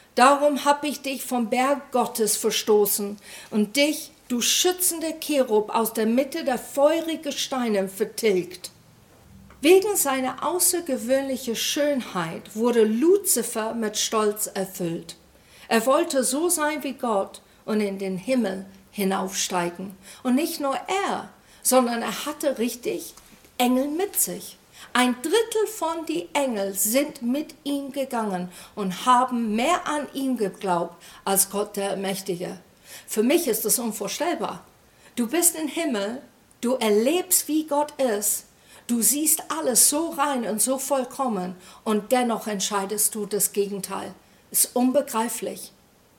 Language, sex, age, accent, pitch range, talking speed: German, female, 50-69, German, 210-285 Hz, 130 wpm